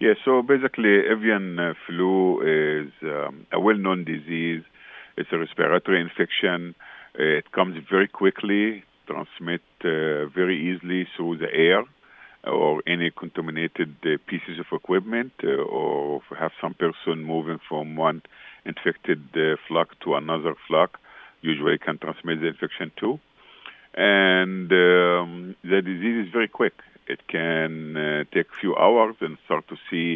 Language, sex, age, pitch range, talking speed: English, male, 50-69, 80-95 Hz, 145 wpm